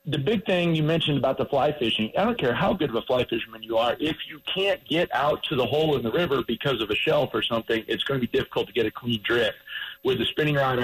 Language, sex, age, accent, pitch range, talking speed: English, male, 40-59, American, 120-155 Hz, 280 wpm